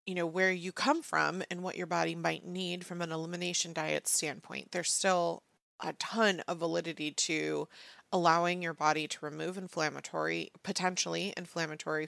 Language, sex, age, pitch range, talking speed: English, female, 30-49, 155-185 Hz, 160 wpm